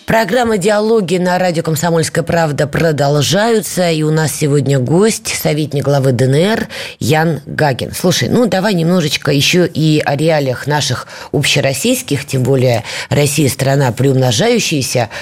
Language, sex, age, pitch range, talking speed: Russian, female, 20-39, 140-195 Hz, 130 wpm